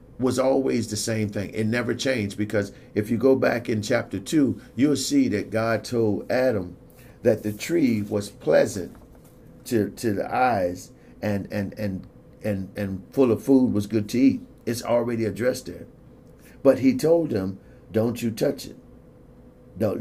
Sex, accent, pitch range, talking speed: male, American, 105-125 Hz, 170 wpm